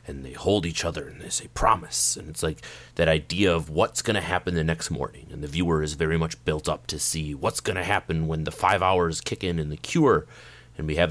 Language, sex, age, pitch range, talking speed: English, male, 30-49, 80-115 Hz, 260 wpm